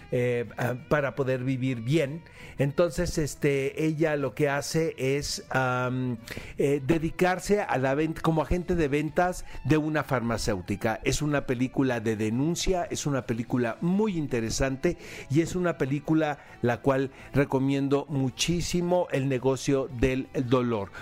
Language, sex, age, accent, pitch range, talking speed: Spanish, male, 50-69, Mexican, 120-155 Hz, 135 wpm